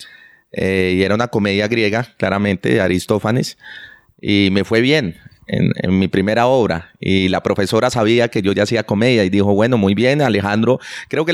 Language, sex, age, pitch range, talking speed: Spanish, male, 30-49, 95-125 Hz, 185 wpm